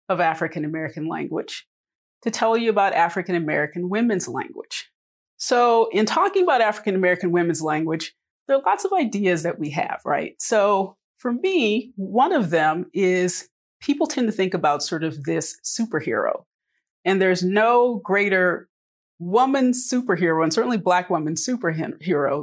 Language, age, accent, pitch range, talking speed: English, 30-49, American, 165-210 Hz, 140 wpm